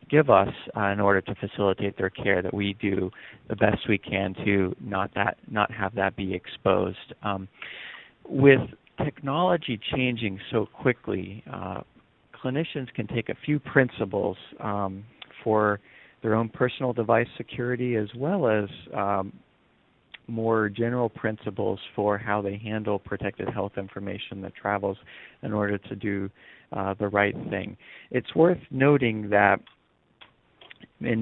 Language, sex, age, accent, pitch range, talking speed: English, male, 40-59, American, 100-120 Hz, 140 wpm